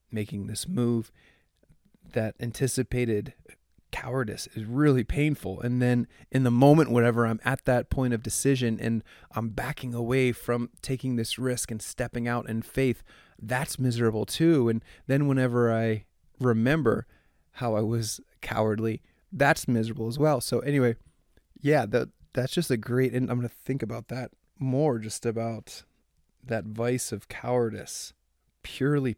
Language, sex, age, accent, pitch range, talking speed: English, male, 20-39, American, 110-130 Hz, 150 wpm